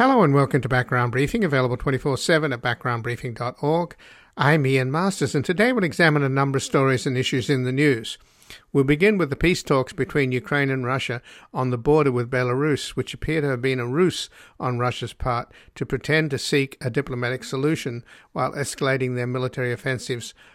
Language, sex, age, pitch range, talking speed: English, male, 50-69, 125-145 Hz, 185 wpm